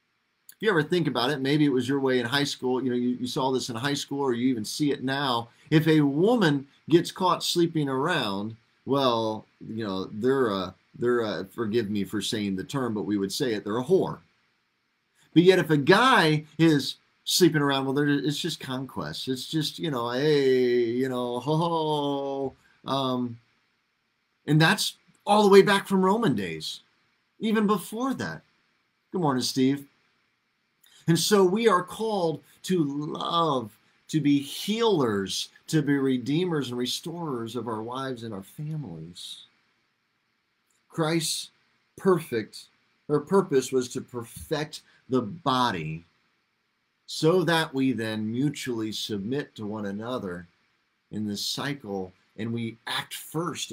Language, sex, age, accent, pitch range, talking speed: English, male, 40-59, American, 115-155 Hz, 155 wpm